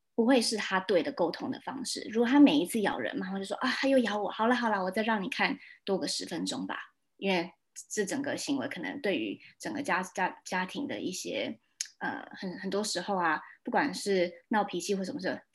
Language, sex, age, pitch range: Chinese, female, 20-39, 185-265 Hz